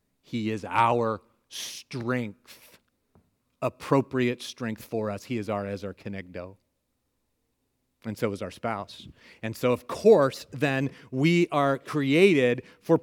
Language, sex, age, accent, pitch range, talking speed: English, male, 40-59, American, 115-165 Hz, 130 wpm